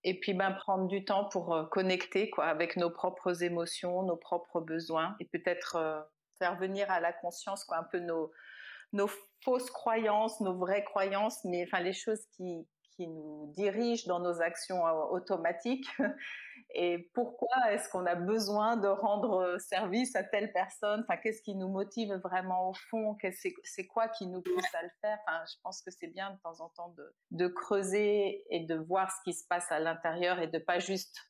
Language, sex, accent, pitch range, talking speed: French, female, French, 175-210 Hz, 195 wpm